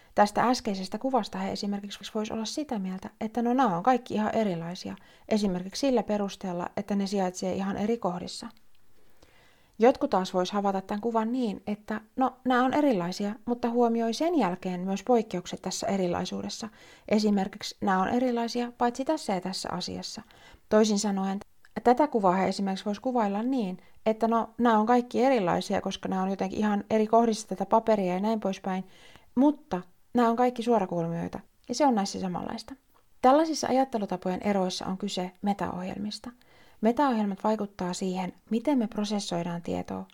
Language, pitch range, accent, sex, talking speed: Finnish, 185-240 Hz, native, female, 155 wpm